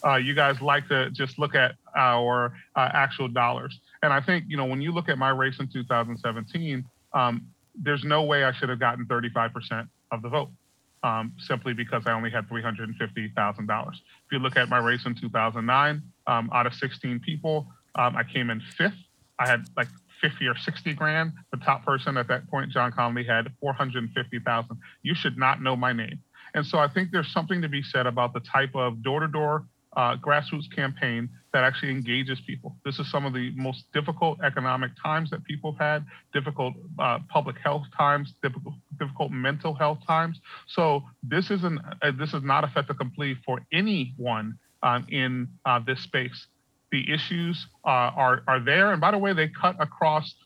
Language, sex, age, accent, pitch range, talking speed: English, male, 40-59, American, 125-150 Hz, 190 wpm